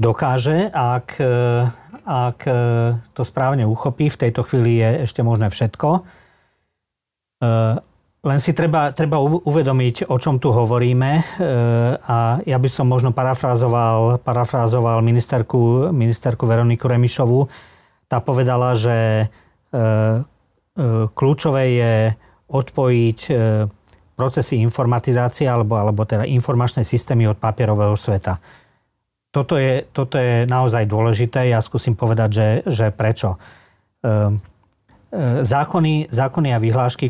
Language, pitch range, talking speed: Slovak, 110-125 Hz, 105 wpm